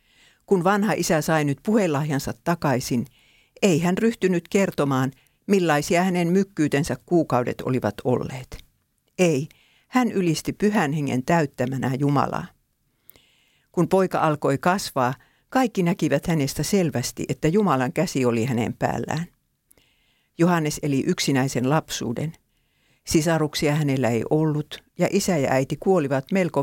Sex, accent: female, Finnish